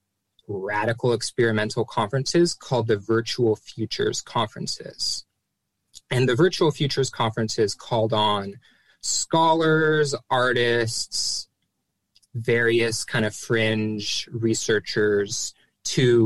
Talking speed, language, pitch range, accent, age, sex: 85 wpm, English, 110-140 Hz, American, 20-39, male